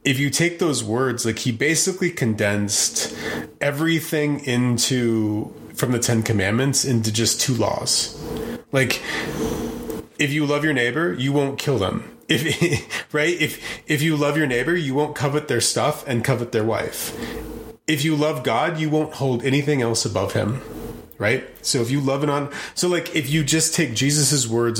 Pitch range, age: 110-145 Hz, 30-49